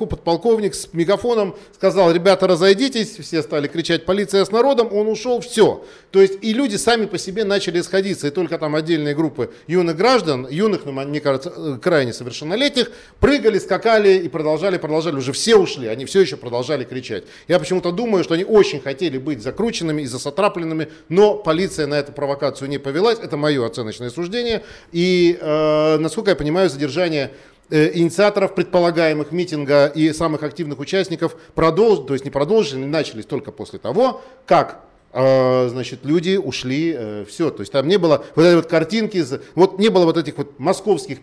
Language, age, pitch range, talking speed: Russian, 40-59, 150-195 Hz, 170 wpm